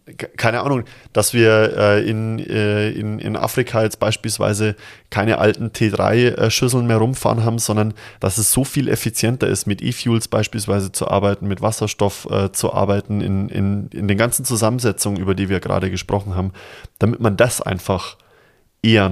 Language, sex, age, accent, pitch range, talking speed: German, male, 20-39, German, 95-115 Hz, 150 wpm